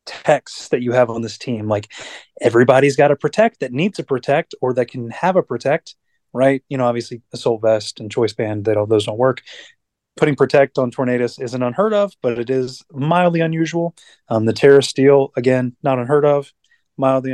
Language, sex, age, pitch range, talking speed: English, male, 30-49, 115-135 Hz, 200 wpm